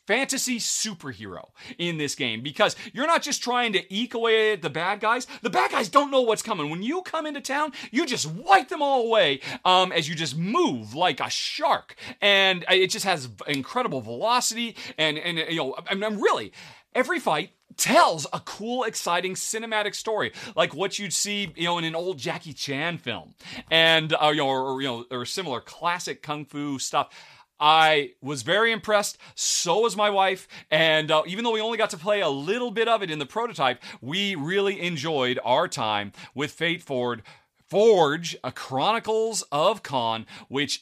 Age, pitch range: 40-59, 145-220 Hz